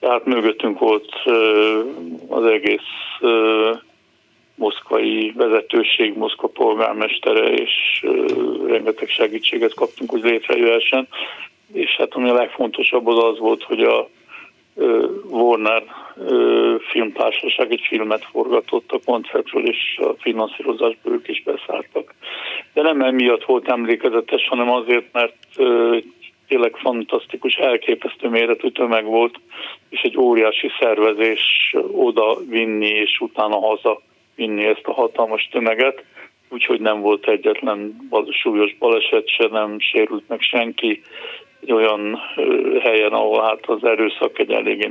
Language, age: Hungarian, 50-69